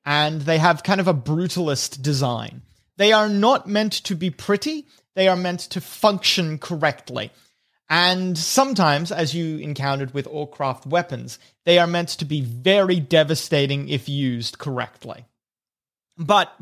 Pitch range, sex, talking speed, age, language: 145-195 Hz, male, 145 wpm, 30-49, English